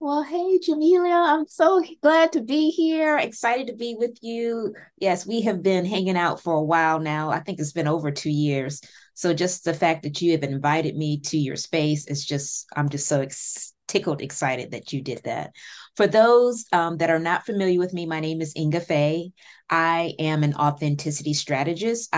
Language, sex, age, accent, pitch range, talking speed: English, female, 20-39, American, 145-175 Hz, 200 wpm